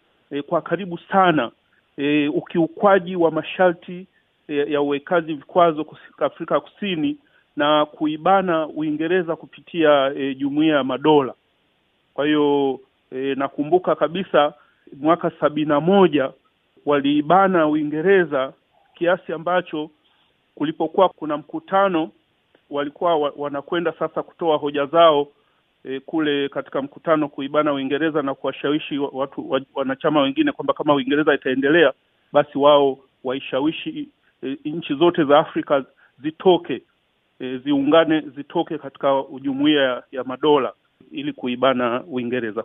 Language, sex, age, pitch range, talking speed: Swahili, male, 40-59, 140-175 Hz, 110 wpm